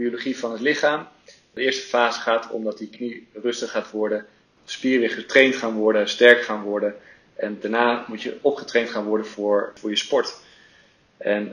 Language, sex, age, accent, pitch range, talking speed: Dutch, male, 40-59, Dutch, 110-130 Hz, 175 wpm